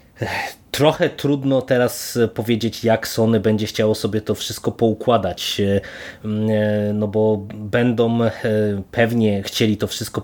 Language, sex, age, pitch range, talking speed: Polish, male, 20-39, 105-120 Hz, 110 wpm